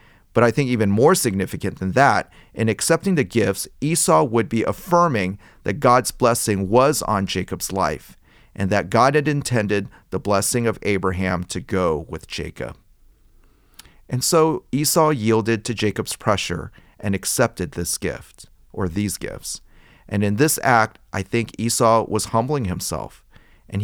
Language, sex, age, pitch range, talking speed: English, male, 40-59, 95-120 Hz, 155 wpm